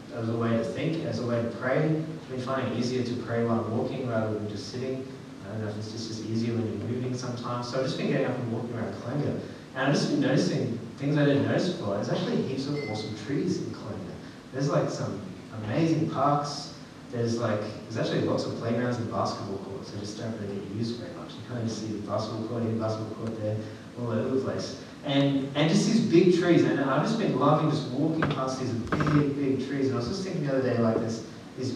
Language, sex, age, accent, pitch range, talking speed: English, male, 20-39, Australian, 115-155 Hz, 245 wpm